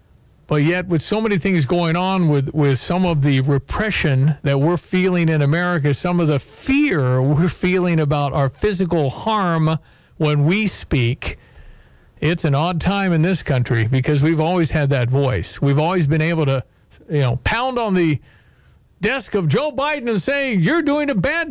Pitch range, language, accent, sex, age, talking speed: 145-185 Hz, English, American, male, 50-69, 180 wpm